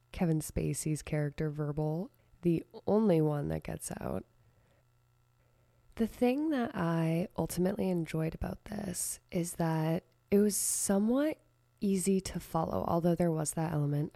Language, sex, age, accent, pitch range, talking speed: English, female, 20-39, American, 140-185 Hz, 130 wpm